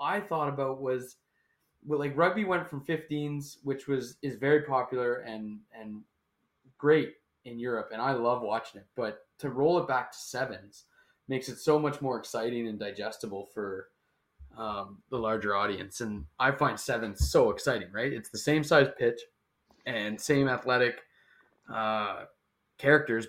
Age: 20-39